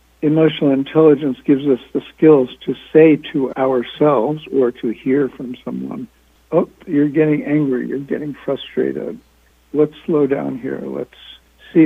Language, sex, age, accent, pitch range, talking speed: English, male, 60-79, American, 130-150 Hz, 140 wpm